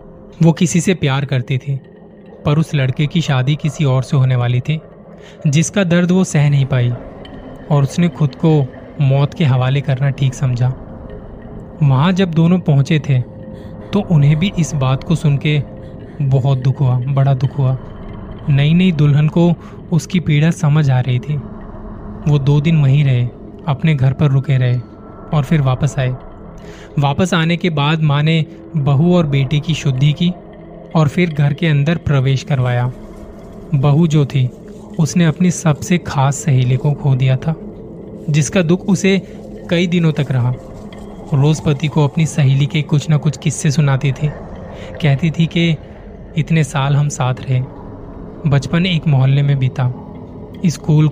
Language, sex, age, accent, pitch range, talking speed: Hindi, male, 20-39, native, 130-165 Hz, 165 wpm